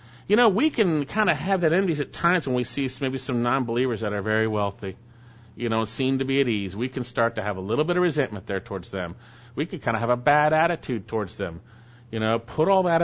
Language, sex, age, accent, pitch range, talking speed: English, male, 40-59, American, 115-155 Hz, 260 wpm